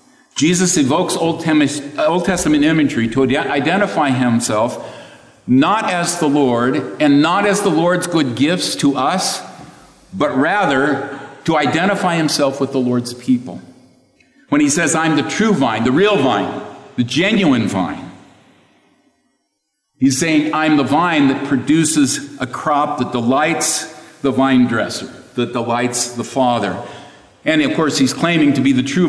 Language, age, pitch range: English, 50-69, 115-150 Hz